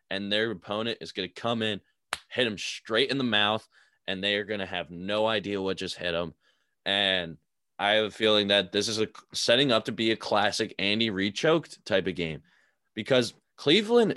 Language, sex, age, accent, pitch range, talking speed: English, male, 20-39, American, 95-115 Hz, 210 wpm